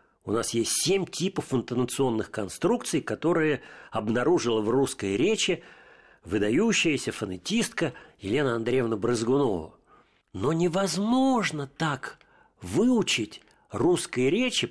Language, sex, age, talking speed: Russian, male, 50-69, 95 wpm